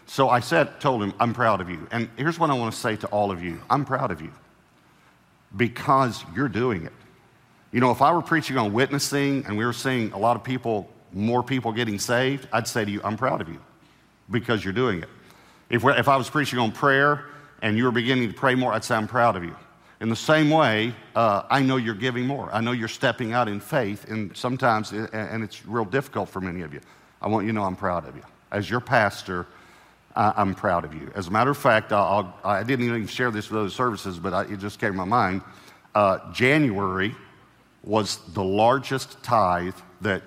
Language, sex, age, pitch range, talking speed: English, male, 50-69, 105-135 Hz, 225 wpm